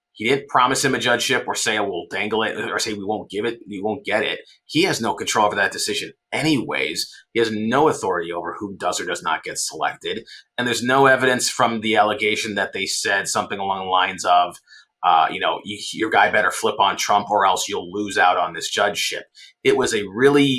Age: 30-49